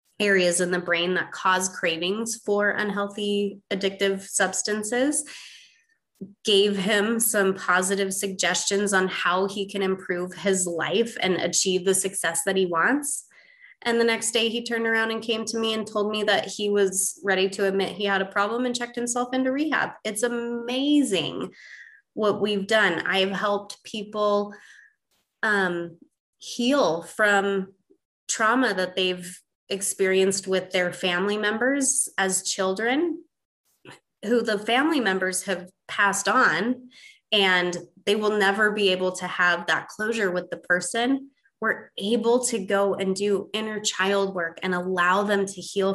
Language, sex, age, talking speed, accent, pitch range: English, female, 20-39, 150 wpm, American, 185-220 Hz